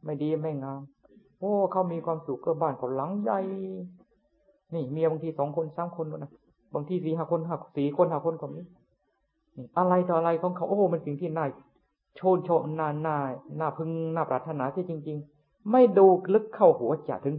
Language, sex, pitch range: Thai, male, 130-175 Hz